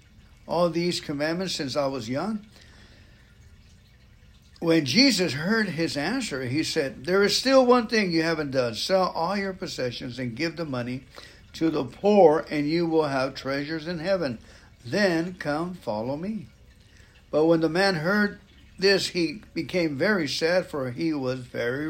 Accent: American